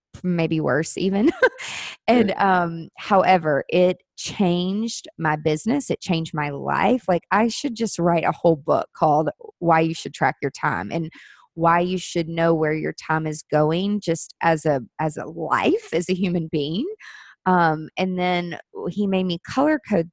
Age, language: 20-39, English